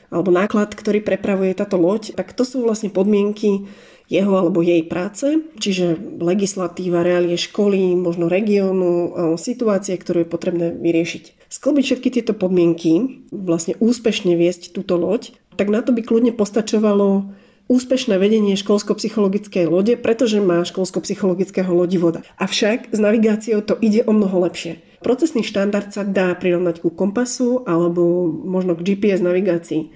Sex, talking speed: female, 140 wpm